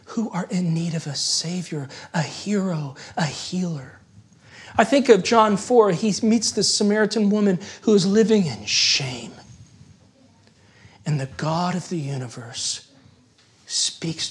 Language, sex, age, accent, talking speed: English, male, 40-59, American, 140 wpm